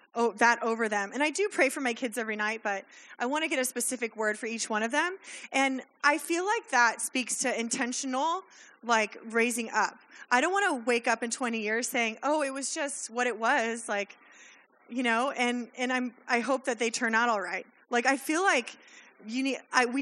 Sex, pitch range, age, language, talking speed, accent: female, 225-265 Hz, 20-39, English, 220 wpm, American